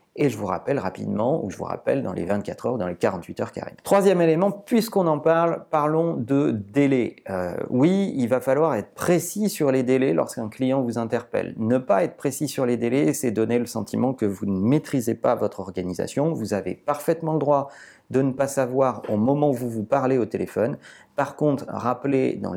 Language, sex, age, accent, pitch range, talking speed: French, male, 40-59, French, 110-150 Hz, 215 wpm